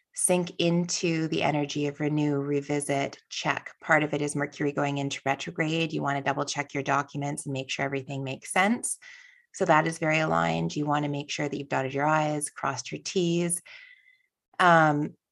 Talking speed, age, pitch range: 190 wpm, 20-39, 145-175 Hz